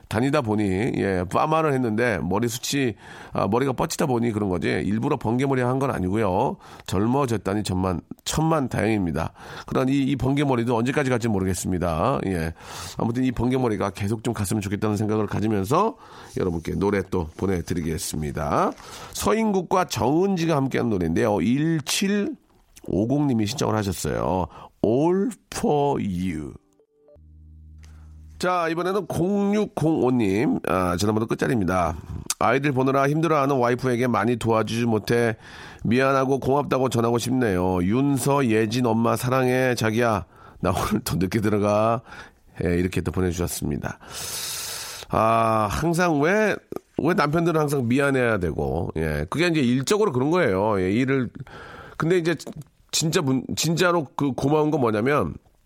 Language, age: Korean, 40-59